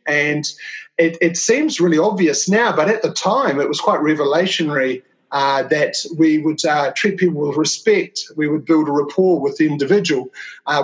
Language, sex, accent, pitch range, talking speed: English, male, Australian, 145-185 Hz, 185 wpm